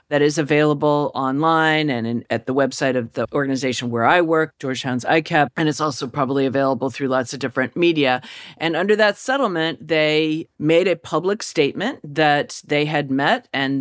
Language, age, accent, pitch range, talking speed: English, 40-59, American, 135-155 Hz, 175 wpm